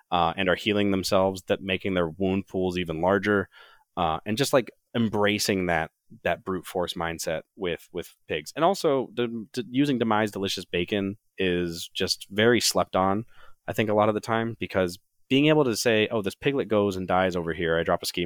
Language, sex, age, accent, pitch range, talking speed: English, male, 30-49, American, 85-105 Hz, 195 wpm